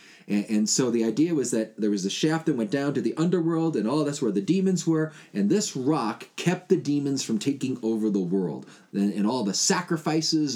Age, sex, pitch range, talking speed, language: 30-49, male, 130-180 Hz, 225 wpm, English